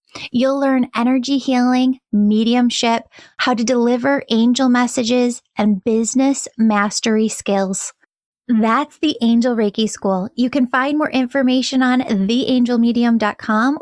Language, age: English, 10-29